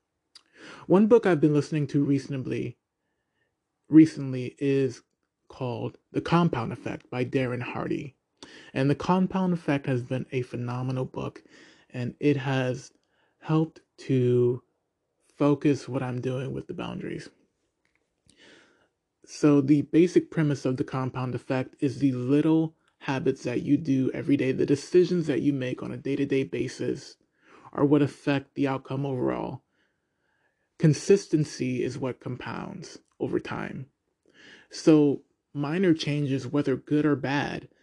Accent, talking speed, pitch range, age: American, 130 wpm, 130-150 Hz, 20-39